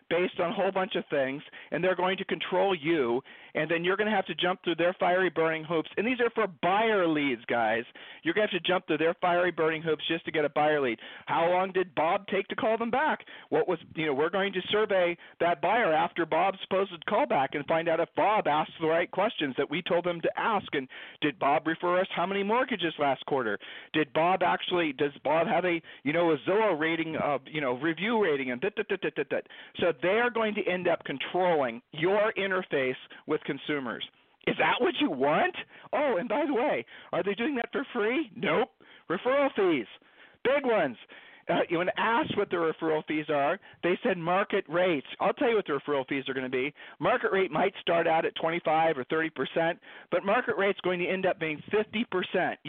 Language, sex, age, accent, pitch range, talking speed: English, male, 40-59, American, 160-195 Hz, 230 wpm